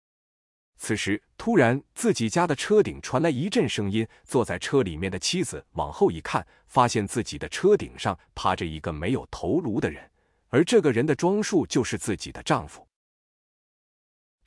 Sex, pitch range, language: male, 100-140 Hz, Chinese